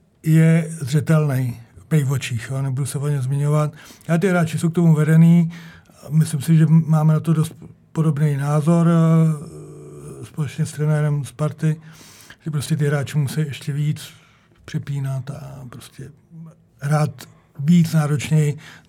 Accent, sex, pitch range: native, male, 135-160 Hz